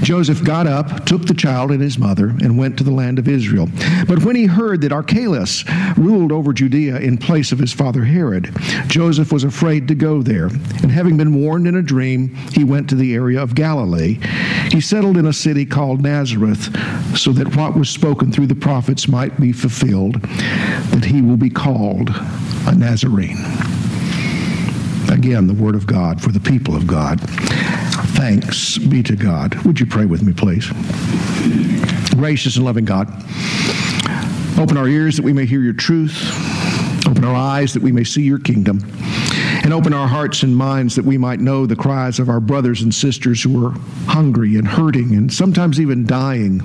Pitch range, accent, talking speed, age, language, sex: 120-155 Hz, American, 185 wpm, 60-79, English, male